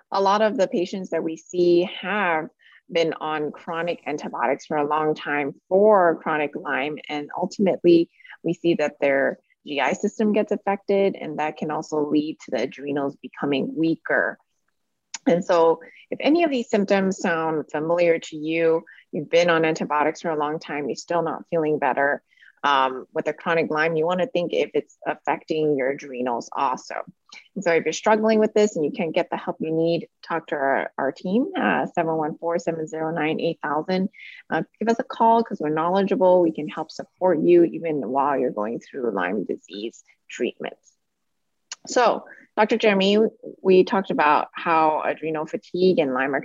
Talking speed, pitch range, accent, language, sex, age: 170 wpm, 155-195 Hz, American, English, female, 30-49